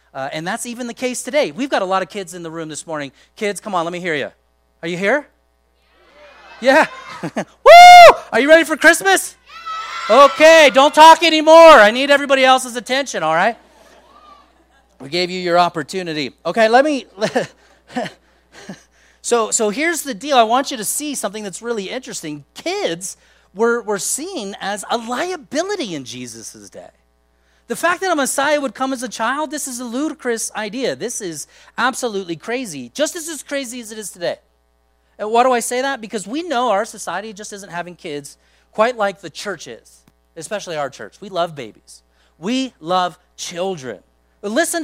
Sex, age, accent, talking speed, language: male, 30-49, American, 180 wpm, English